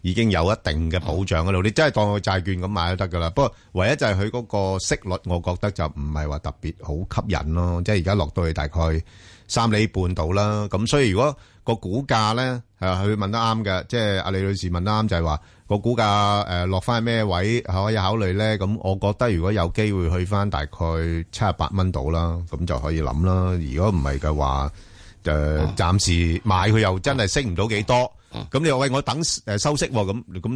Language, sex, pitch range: Chinese, male, 85-105 Hz